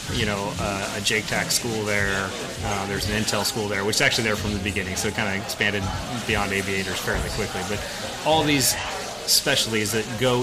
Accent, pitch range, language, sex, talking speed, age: American, 105-125 Hz, English, male, 200 wpm, 30-49